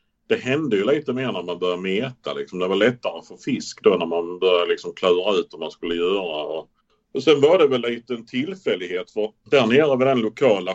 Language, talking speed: Swedish, 230 wpm